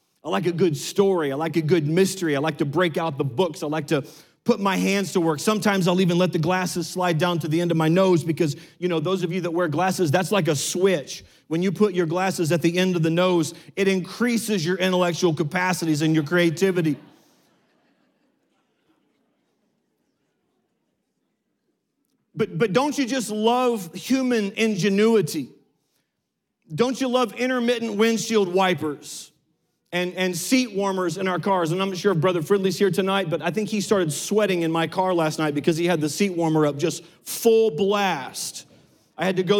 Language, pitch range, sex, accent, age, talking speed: English, 170-205 Hz, male, American, 40-59, 190 wpm